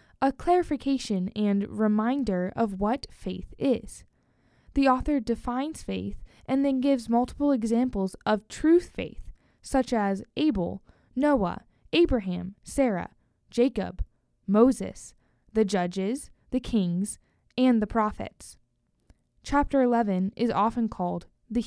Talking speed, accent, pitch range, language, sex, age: 115 wpm, American, 200-265 Hz, English, female, 10-29